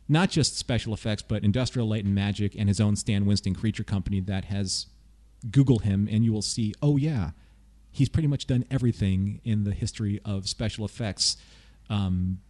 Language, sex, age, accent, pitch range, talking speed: English, male, 40-59, American, 100-130 Hz, 180 wpm